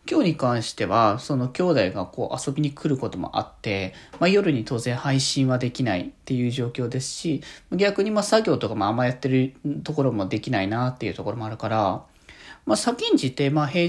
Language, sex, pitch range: Japanese, male, 125-175 Hz